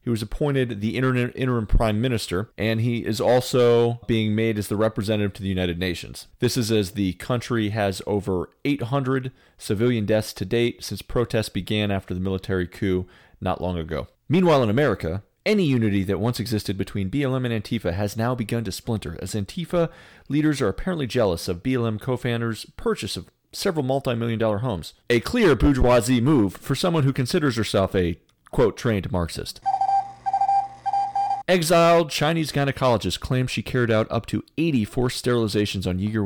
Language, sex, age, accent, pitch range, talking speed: English, male, 30-49, American, 100-130 Hz, 165 wpm